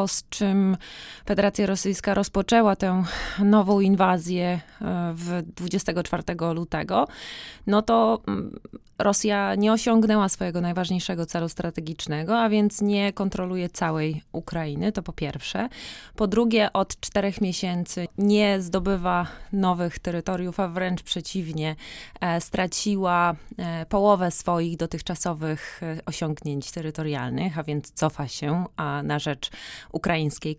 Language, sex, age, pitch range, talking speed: Polish, female, 20-39, 160-205 Hz, 110 wpm